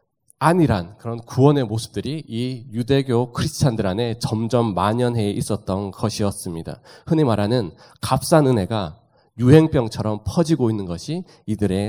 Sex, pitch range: male, 115-150 Hz